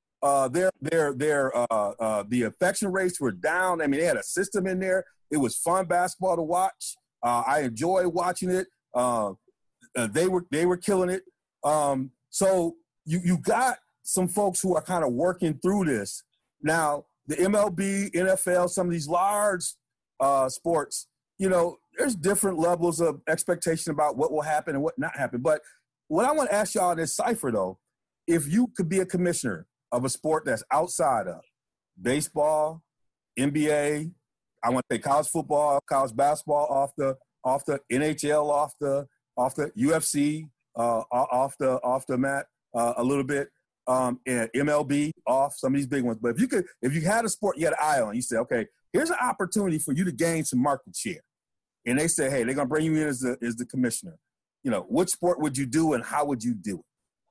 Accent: American